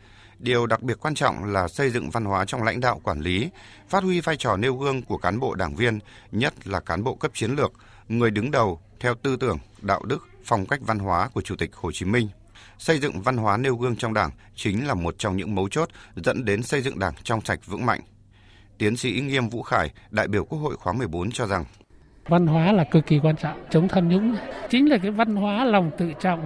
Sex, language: male, Vietnamese